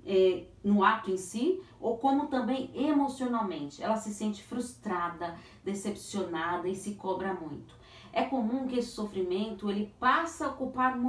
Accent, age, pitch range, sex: Brazilian, 40-59, 195-255 Hz, female